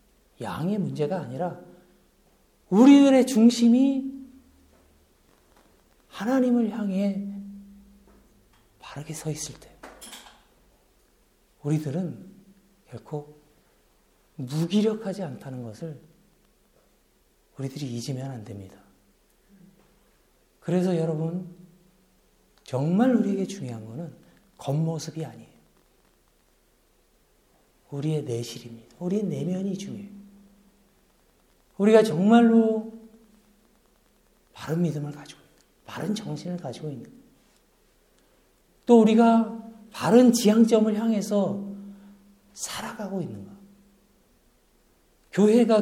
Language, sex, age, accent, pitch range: Korean, male, 40-59, native, 165-215 Hz